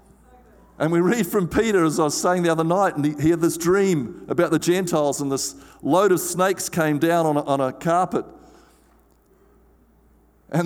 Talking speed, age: 185 wpm, 50-69